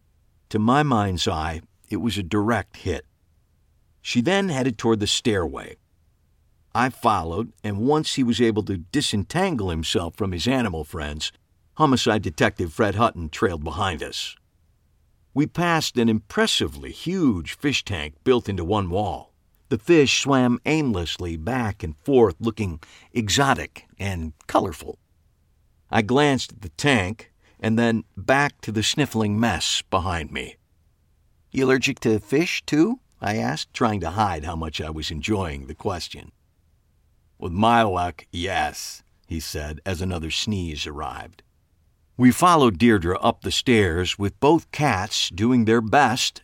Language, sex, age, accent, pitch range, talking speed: English, male, 50-69, American, 85-120 Hz, 140 wpm